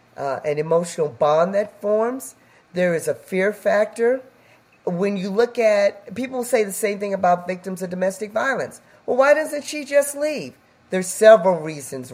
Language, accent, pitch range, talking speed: English, American, 145-210 Hz, 170 wpm